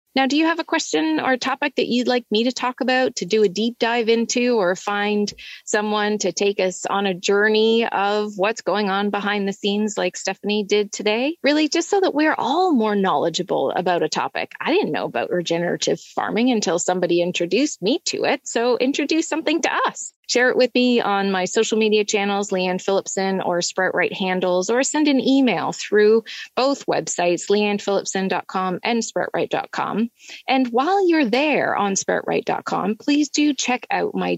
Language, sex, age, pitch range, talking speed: English, female, 20-39, 195-255 Hz, 180 wpm